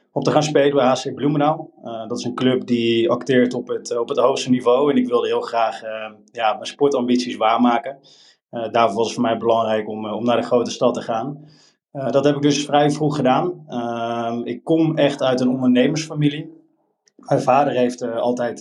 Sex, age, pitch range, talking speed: male, 20-39, 120-145 Hz, 215 wpm